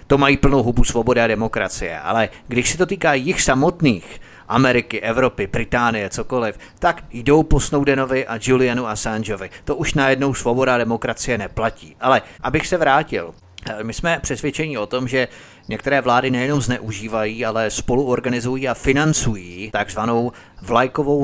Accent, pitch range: native, 110-130 Hz